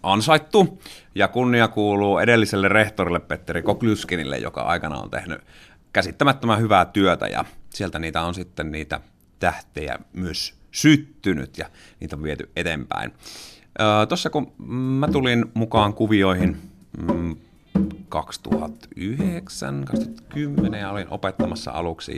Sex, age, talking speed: male, 30-49, 115 wpm